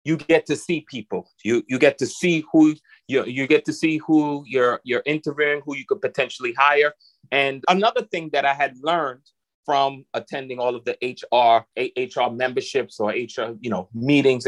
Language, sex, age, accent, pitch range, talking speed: English, male, 30-49, American, 125-155 Hz, 190 wpm